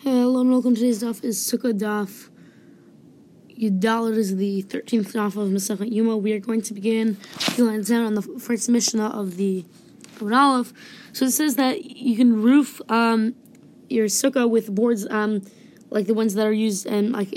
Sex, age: female, 20-39